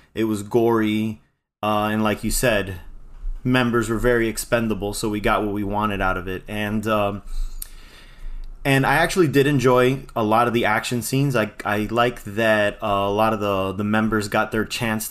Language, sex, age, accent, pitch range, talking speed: English, male, 20-39, American, 105-125 Hz, 190 wpm